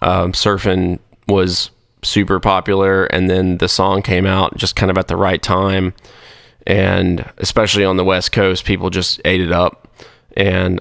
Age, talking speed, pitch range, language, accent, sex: 20-39, 165 wpm, 95-100 Hz, English, American, male